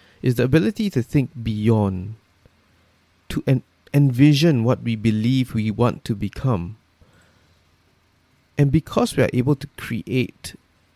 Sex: male